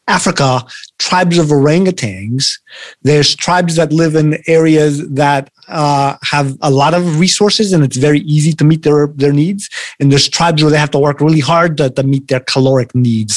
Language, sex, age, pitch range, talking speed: English, male, 30-49, 135-175 Hz, 190 wpm